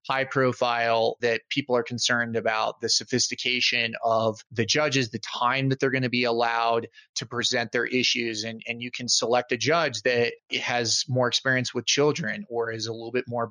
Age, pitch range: 30-49, 120-140 Hz